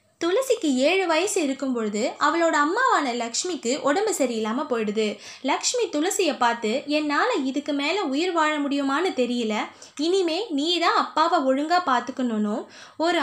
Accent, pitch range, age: native, 245-345 Hz, 20-39